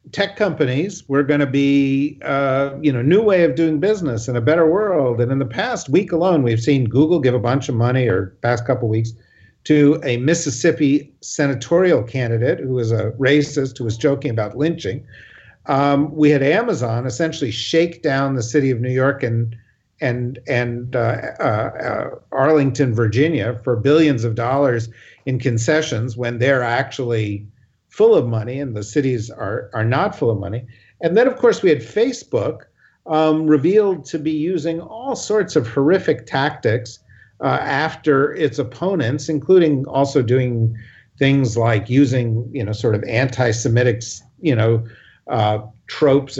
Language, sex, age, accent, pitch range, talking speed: English, male, 50-69, American, 120-155 Hz, 165 wpm